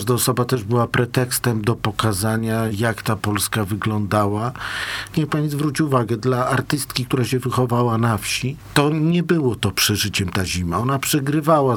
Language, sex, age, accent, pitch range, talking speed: Polish, male, 50-69, native, 100-125 Hz, 160 wpm